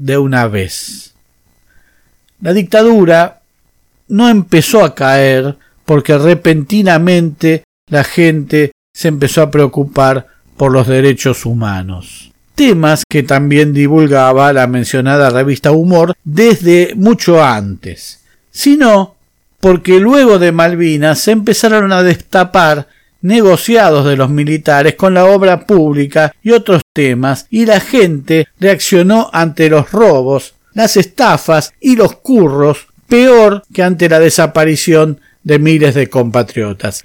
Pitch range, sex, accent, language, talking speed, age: 140-185 Hz, male, Argentinian, Spanish, 120 wpm, 50-69